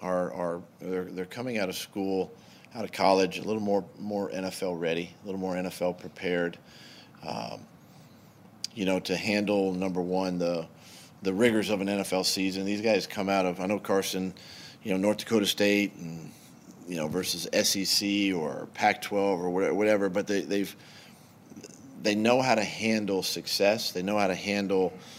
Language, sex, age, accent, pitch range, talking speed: English, male, 40-59, American, 95-105 Hz, 170 wpm